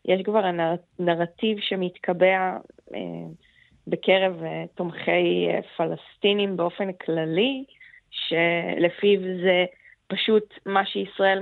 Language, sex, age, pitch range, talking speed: Hebrew, female, 20-39, 180-205 Hz, 75 wpm